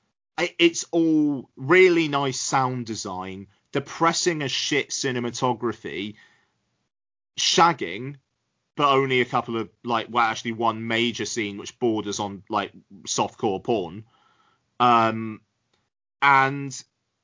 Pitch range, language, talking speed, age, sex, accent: 110-140 Hz, English, 105 wpm, 30-49, male, British